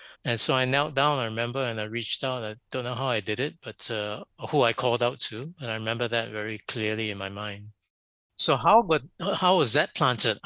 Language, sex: English, male